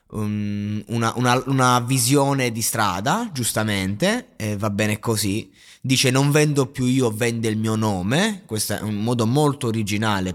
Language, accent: Italian, native